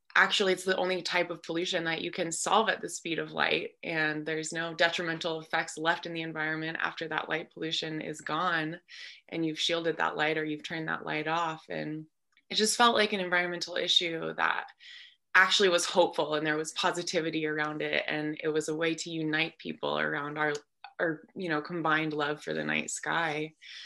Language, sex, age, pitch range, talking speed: English, female, 20-39, 160-185 Hz, 200 wpm